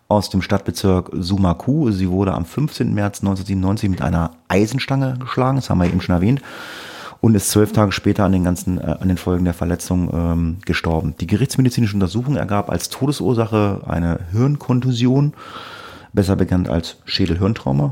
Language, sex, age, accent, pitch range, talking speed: German, male, 30-49, German, 90-115 Hz, 155 wpm